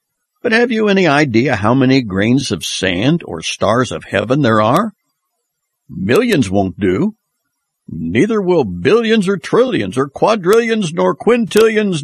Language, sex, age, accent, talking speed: English, male, 60-79, American, 140 wpm